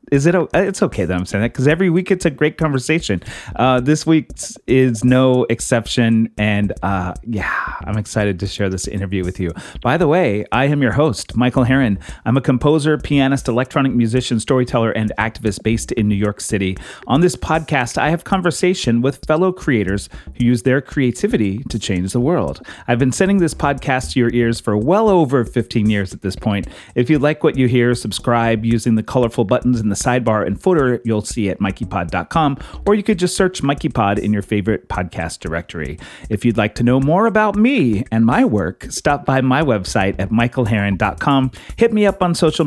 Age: 30-49